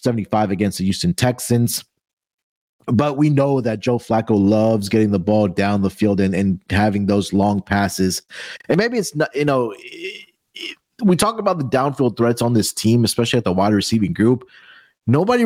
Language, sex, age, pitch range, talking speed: English, male, 30-49, 100-125 Hz, 185 wpm